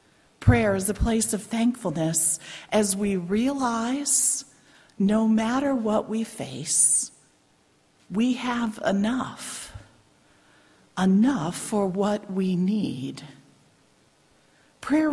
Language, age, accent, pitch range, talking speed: English, 50-69, American, 195-255 Hz, 90 wpm